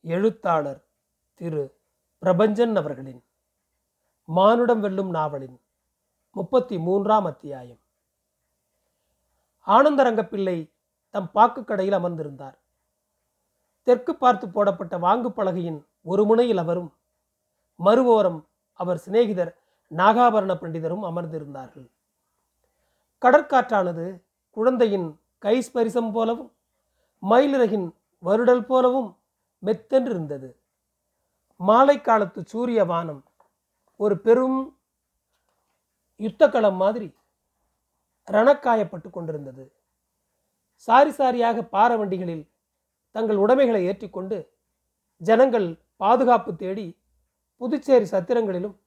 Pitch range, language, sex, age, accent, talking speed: 170-230 Hz, Tamil, male, 40-59, native, 70 wpm